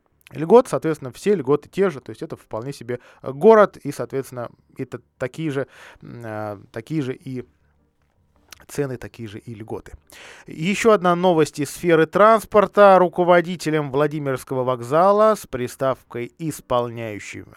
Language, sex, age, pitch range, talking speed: Russian, male, 20-39, 120-180 Hz, 130 wpm